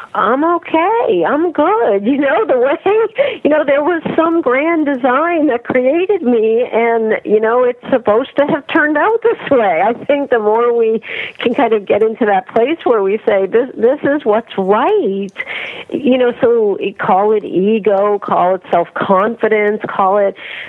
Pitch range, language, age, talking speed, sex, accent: 195-295 Hz, English, 50-69, 175 wpm, female, American